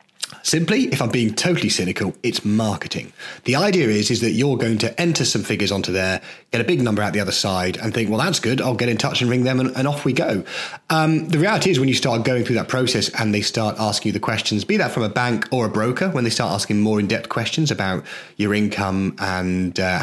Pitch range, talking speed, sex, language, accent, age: 100-135 Hz, 250 wpm, male, English, British, 30-49